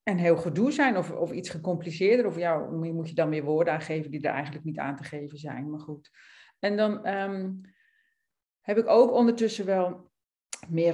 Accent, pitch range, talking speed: Dutch, 170-225 Hz, 190 wpm